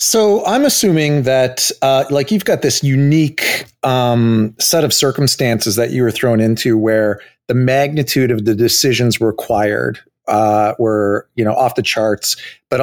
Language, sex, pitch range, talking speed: English, male, 110-130 Hz, 160 wpm